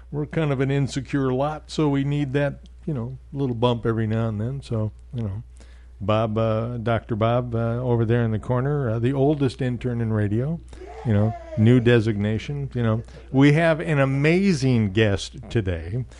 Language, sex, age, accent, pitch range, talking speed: English, male, 60-79, American, 110-135 Hz, 180 wpm